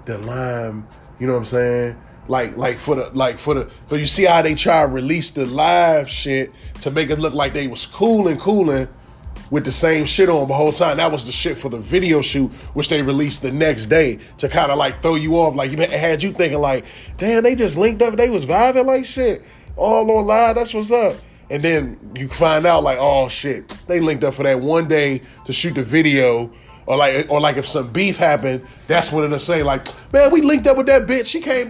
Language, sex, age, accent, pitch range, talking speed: English, male, 20-39, American, 135-200 Hz, 240 wpm